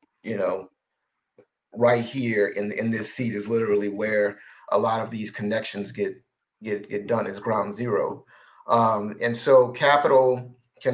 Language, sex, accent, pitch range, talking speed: English, male, American, 110-125 Hz, 155 wpm